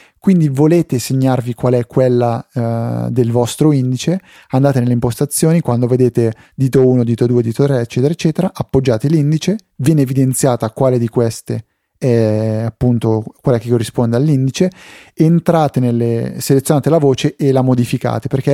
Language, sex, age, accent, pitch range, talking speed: Italian, male, 30-49, native, 120-140 Hz, 145 wpm